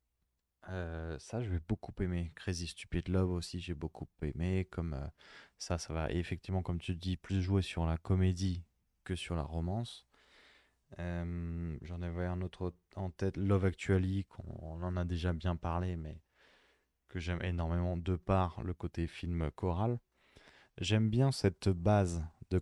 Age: 20-39